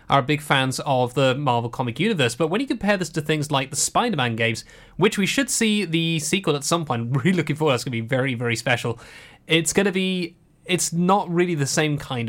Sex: male